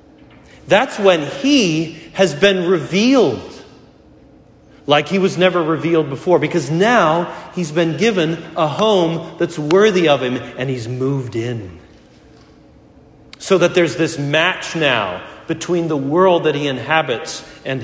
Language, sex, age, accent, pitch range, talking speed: English, male, 40-59, American, 125-180 Hz, 135 wpm